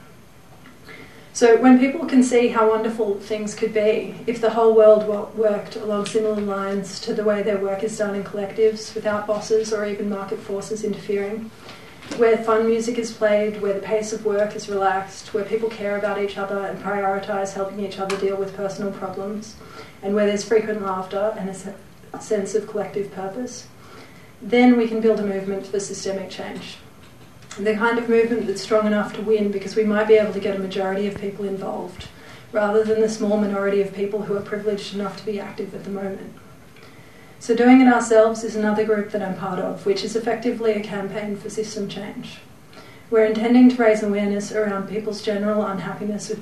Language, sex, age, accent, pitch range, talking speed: English, female, 30-49, Australian, 200-220 Hz, 190 wpm